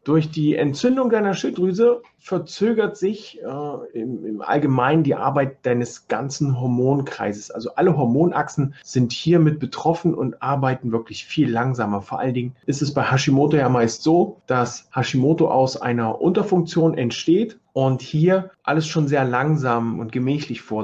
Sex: male